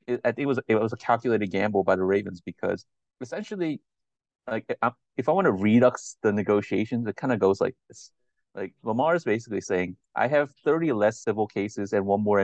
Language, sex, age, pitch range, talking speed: English, male, 30-49, 100-125 Hz, 210 wpm